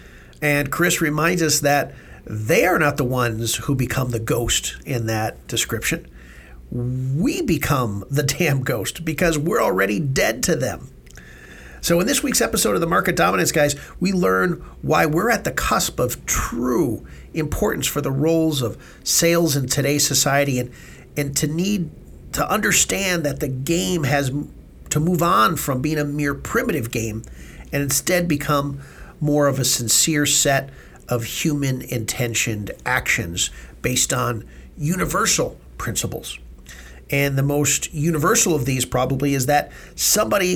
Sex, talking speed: male, 150 wpm